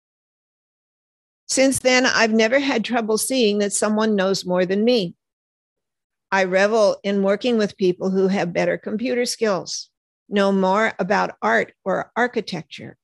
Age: 50-69